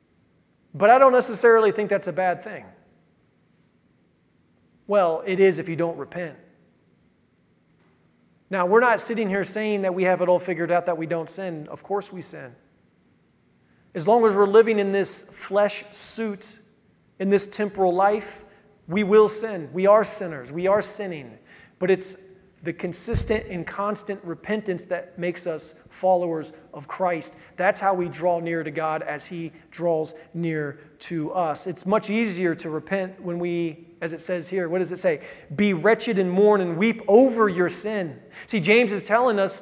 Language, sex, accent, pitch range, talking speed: English, male, American, 180-230 Hz, 175 wpm